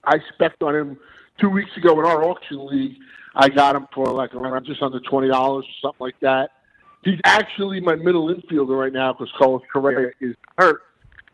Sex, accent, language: male, American, English